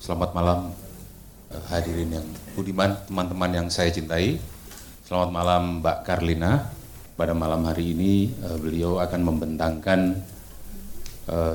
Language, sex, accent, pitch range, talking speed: Indonesian, male, native, 85-105 Hz, 120 wpm